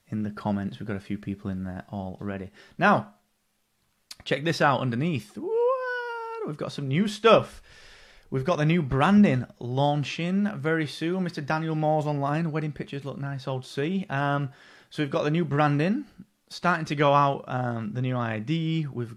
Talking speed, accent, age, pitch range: 175 wpm, British, 30-49, 115-160 Hz